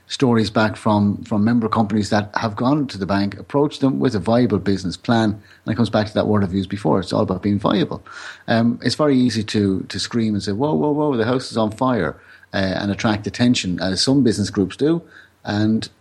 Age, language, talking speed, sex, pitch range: 30-49, English, 230 wpm, male, 95-115 Hz